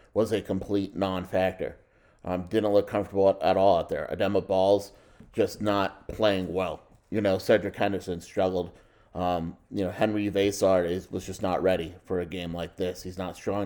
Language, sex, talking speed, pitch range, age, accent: English, male, 180 wpm, 95-105 Hz, 30-49, American